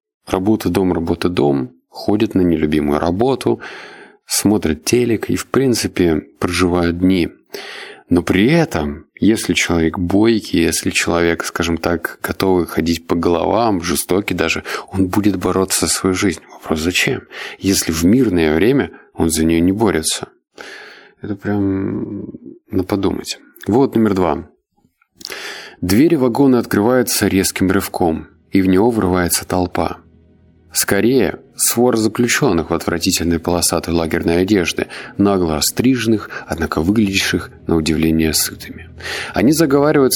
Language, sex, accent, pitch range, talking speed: Russian, male, native, 85-105 Hz, 120 wpm